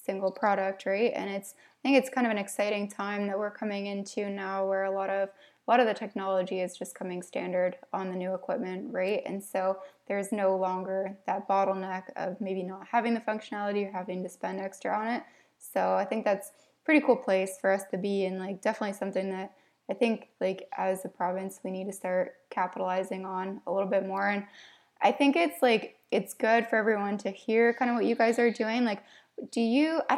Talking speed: 220 wpm